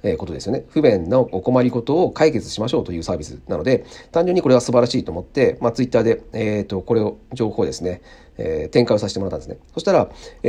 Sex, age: male, 40-59